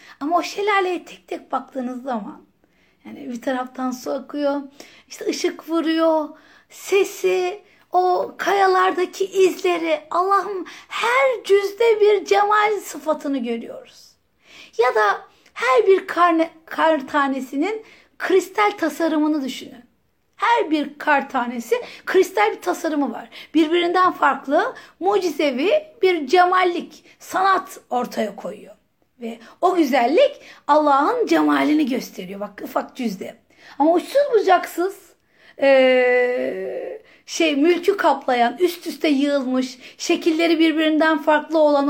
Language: Turkish